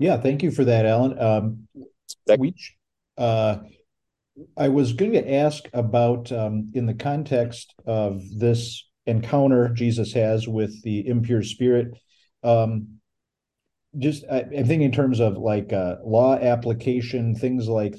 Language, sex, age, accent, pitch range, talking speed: English, male, 50-69, American, 110-125 Hz, 135 wpm